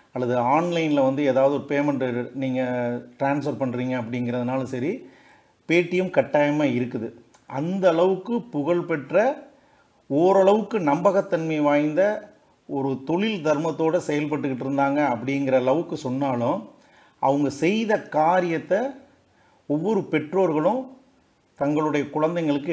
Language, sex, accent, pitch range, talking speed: Tamil, male, native, 140-185 Hz, 90 wpm